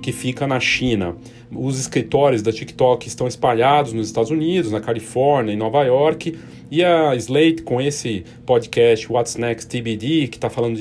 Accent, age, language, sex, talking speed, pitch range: Brazilian, 40-59, Portuguese, male, 165 wpm, 115-150 Hz